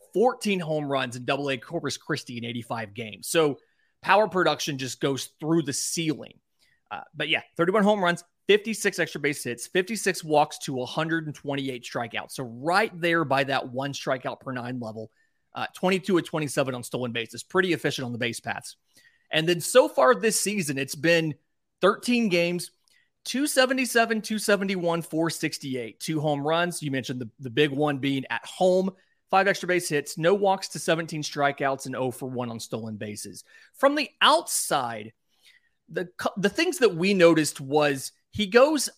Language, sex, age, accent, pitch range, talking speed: English, male, 30-49, American, 140-195 Hz, 170 wpm